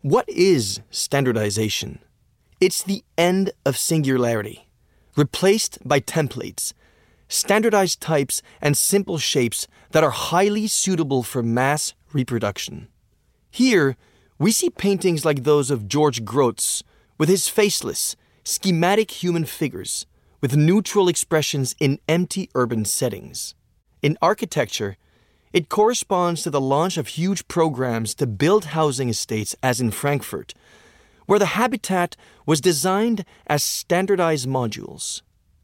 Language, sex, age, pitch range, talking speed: French, male, 20-39, 125-195 Hz, 120 wpm